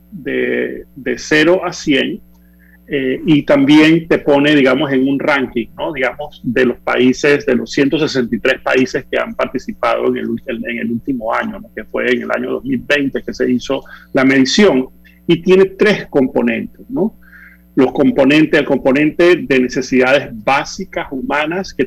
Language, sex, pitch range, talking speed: Spanish, male, 125-155 Hz, 160 wpm